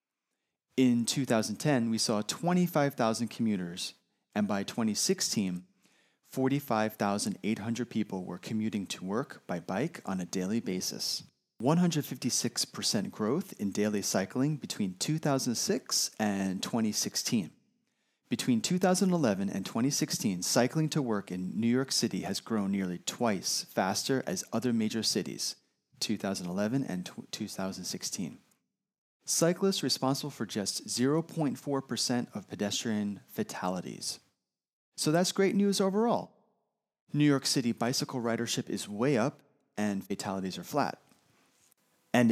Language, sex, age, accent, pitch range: Japanese, male, 30-49, American, 105-160 Hz